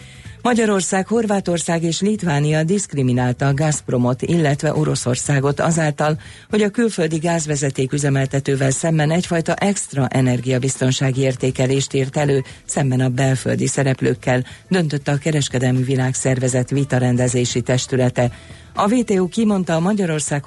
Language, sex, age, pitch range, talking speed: Hungarian, female, 40-59, 130-165 Hz, 105 wpm